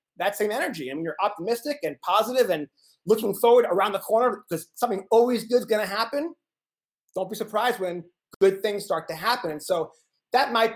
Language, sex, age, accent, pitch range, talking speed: English, male, 30-49, American, 185-235 Hz, 200 wpm